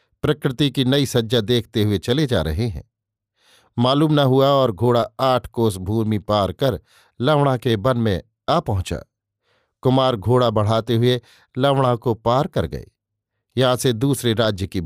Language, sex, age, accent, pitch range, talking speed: Hindi, male, 50-69, native, 105-135 Hz, 160 wpm